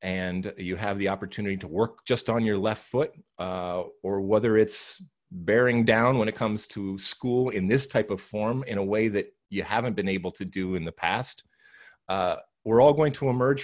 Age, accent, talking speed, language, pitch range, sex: 30-49, American, 205 wpm, English, 95-125 Hz, male